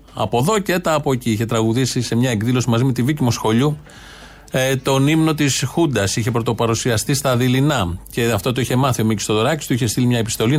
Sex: male